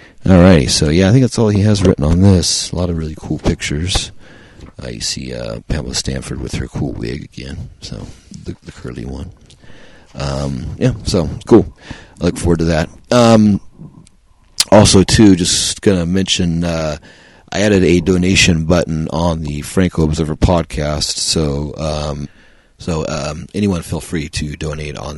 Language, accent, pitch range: English, American, 75-90 Hz